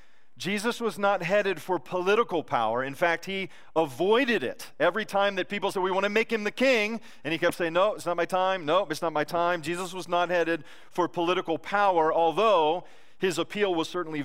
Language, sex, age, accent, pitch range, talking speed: English, male, 40-59, American, 135-185 Hz, 205 wpm